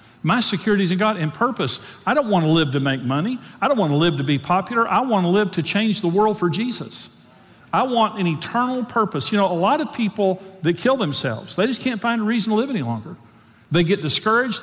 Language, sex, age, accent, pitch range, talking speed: English, male, 50-69, American, 160-205 Hz, 245 wpm